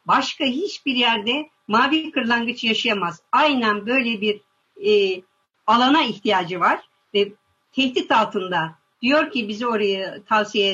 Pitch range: 210-300 Hz